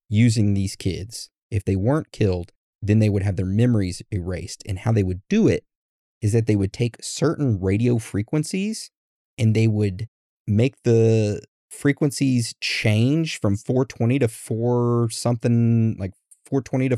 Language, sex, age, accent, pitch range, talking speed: English, male, 30-49, American, 100-120 Hz, 150 wpm